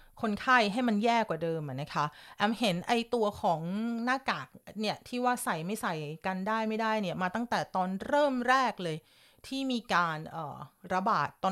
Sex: female